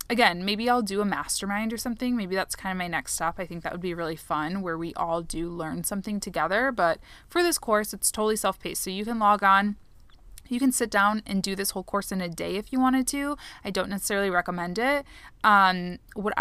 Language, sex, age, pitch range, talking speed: English, female, 20-39, 180-220 Hz, 235 wpm